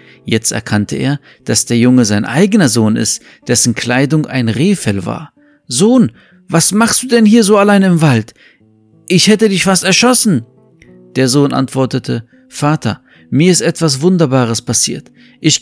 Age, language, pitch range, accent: 50-69, German, 120-175 Hz, German